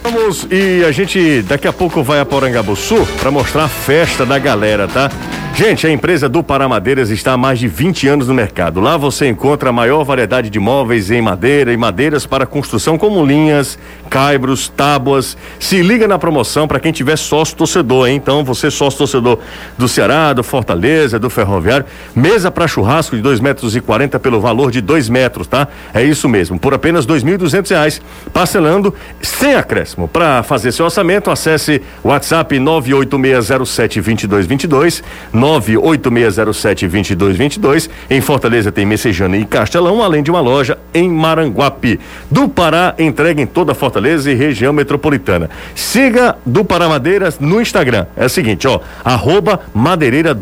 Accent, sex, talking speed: Brazilian, male, 160 wpm